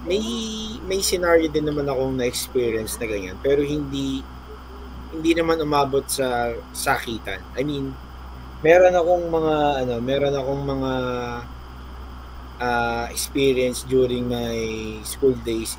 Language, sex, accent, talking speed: Filipino, male, native, 120 wpm